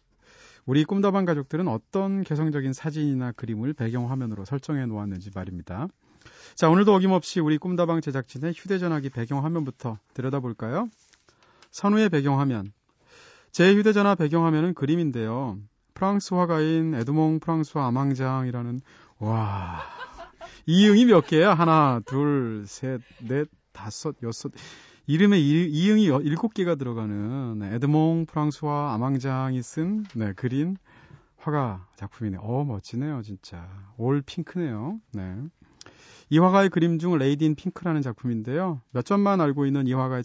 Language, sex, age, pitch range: Korean, male, 40-59, 120-165 Hz